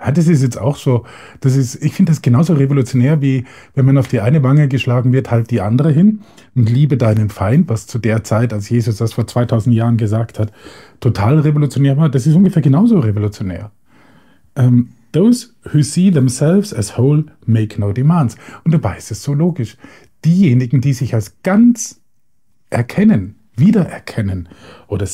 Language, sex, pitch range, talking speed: German, male, 115-155 Hz, 175 wpm